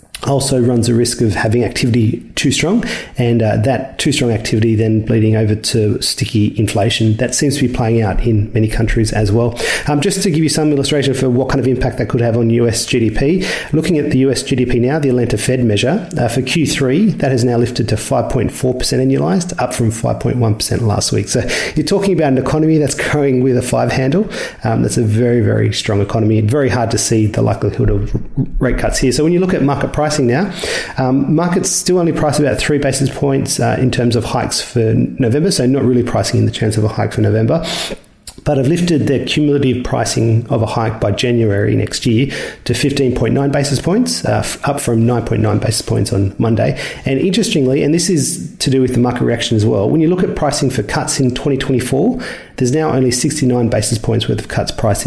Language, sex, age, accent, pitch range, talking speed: English, male, 40-59, Australian, 115-145 Hz, 215 wpm